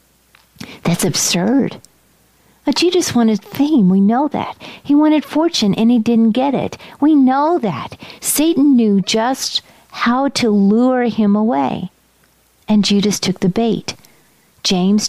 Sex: female